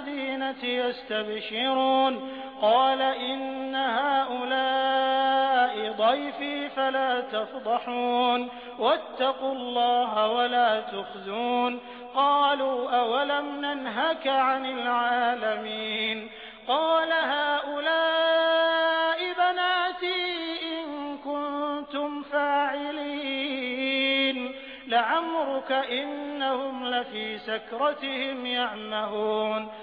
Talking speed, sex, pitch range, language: 60 wpm, male, 245-290 Hz, Hindi